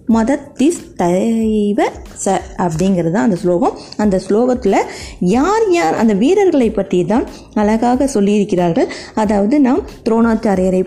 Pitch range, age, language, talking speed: 195-315 Hz, 20-39, Tamil, 110 wpm